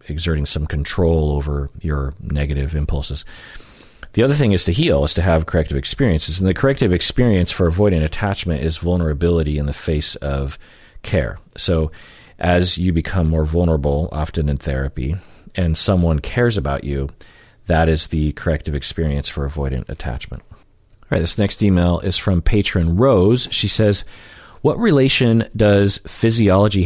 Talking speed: 155 wpm